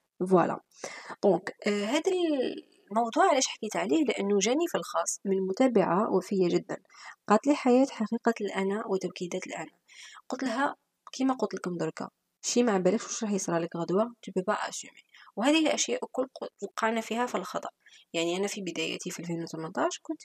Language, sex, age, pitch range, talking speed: Arabic, female, 20-39, 190-260 Hz, 140 wpm